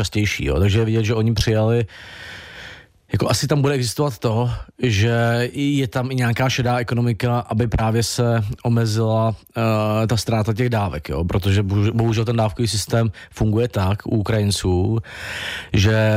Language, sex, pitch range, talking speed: Czech, male, 105-120 Hz, 150 wpm